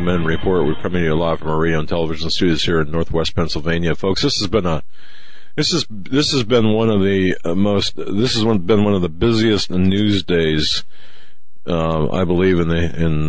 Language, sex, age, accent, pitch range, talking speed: English, male, 50-69, American, 80-100 Hz, 205 wpm